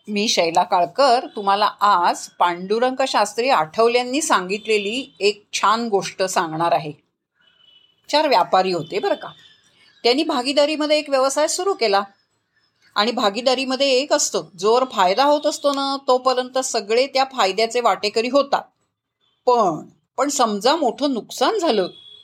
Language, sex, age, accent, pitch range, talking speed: Marathi, female, 40-59, native, 210-280 Hz, 125 wpm